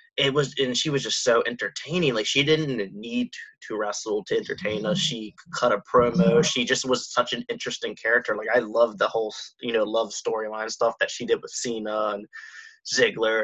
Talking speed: 200 wpm